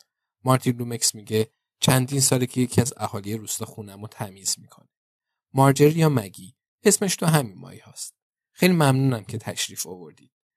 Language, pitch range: Persian, 110-135 Hz